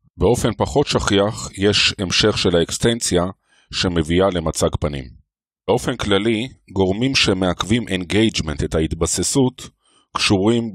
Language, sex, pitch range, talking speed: Hebrew, male, 85-110 Hz, 100 wpm